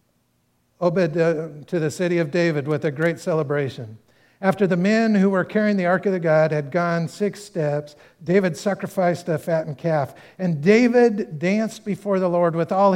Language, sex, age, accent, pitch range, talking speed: English, male, 50-69, American, 165-200 Hz, 175 wpm